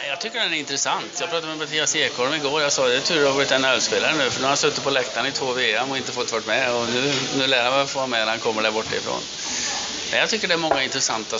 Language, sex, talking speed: English, male, 310 wpm